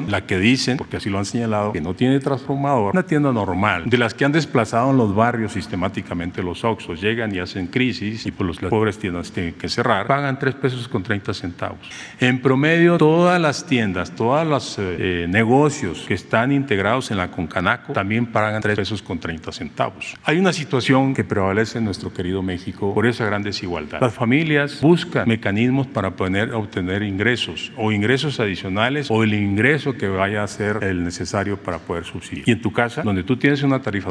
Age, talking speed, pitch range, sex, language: 40-59, 195 wpm, 100-130 Hz, male, Spanish